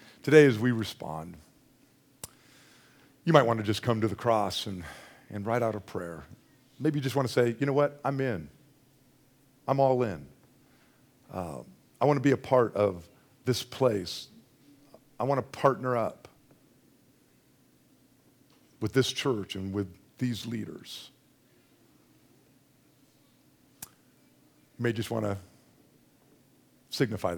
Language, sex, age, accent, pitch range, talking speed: English, male, 50-69, American, 100-130 Hz, 135 wpm